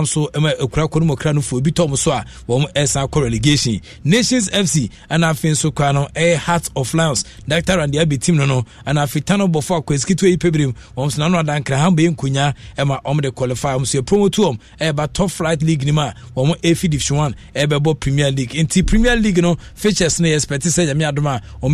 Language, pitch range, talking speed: English, 140-175 Hz, 165 wpm